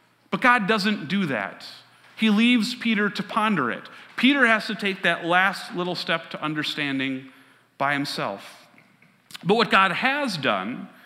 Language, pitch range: English, 155-210 Hz